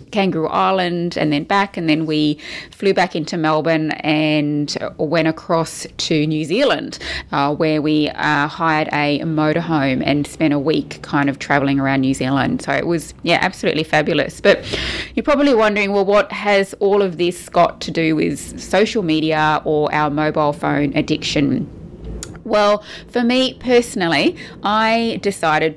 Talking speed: 160 wpm